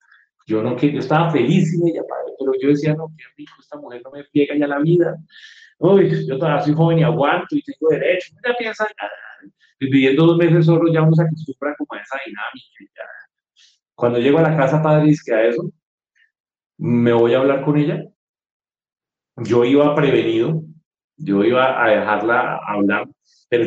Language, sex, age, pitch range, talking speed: Spanish, male, 30-49, 135-170 Hz, 175 wpm